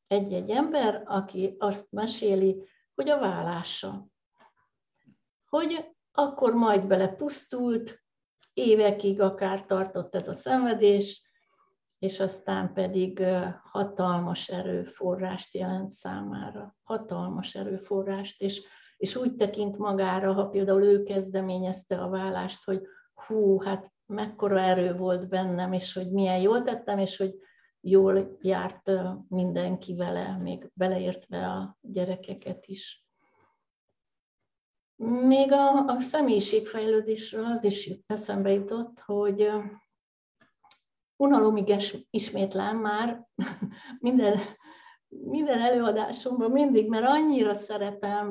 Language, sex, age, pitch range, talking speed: Hungarian, female, 60-79, 190-220 Hz, 100 wpm